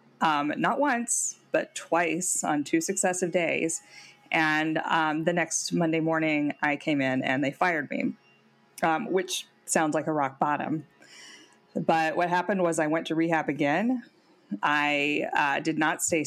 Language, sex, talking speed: English, female, 160 wpm